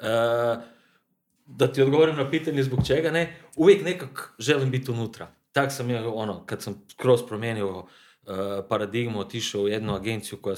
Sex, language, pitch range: male, Croatian, 110-135 Hz